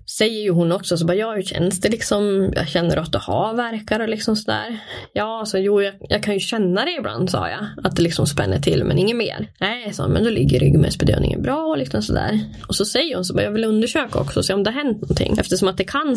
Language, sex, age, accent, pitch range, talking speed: English, female, 20-39, Swedish, 175-230 Hz, 255 wpm